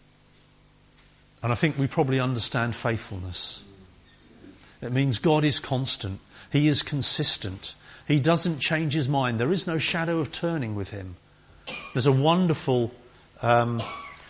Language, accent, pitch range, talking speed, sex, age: English, British, 115-150 Hz, 135 wpm, male, 50-69